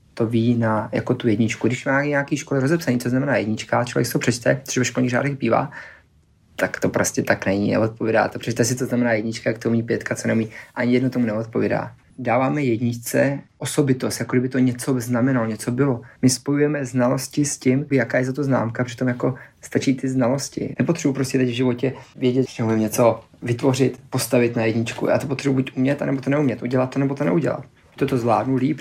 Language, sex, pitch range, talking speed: Czech, male, 115-135 Hz, 205 wpm